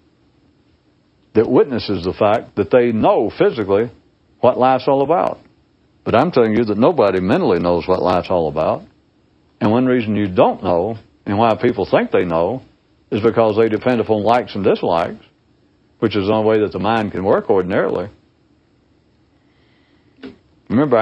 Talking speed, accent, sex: 160 wpm, American, male